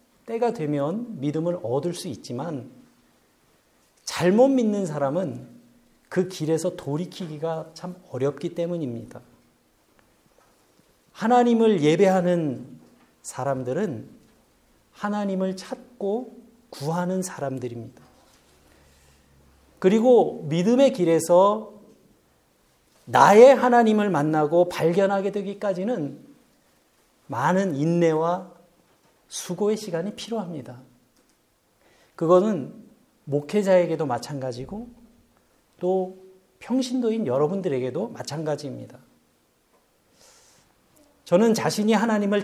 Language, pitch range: Korean, 155-225 Hz